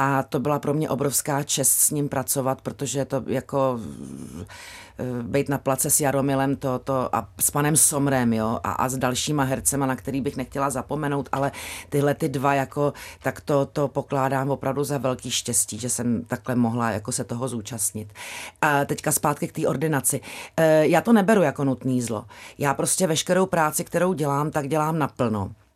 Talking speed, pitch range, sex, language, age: 165 wpm, 130-155 Hz, female, Czech, 40-59